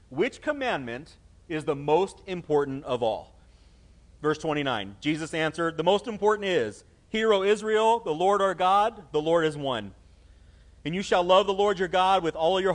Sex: male